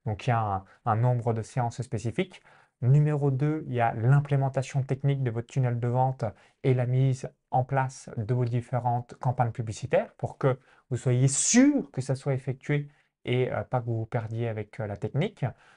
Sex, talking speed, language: male, 200 wpm, French